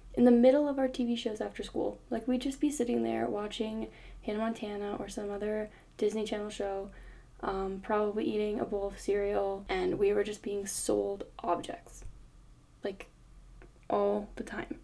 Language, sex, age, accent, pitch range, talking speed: English, female, 10-29, American, 205-240 Hz, 170 wpm